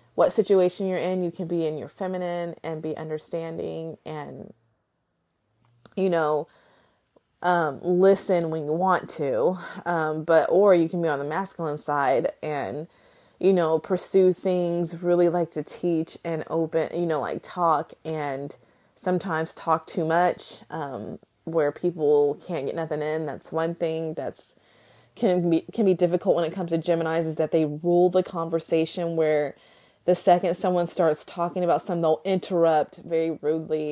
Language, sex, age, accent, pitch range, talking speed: English, female, 20-39, American, 160-185 Hz, 160 wpm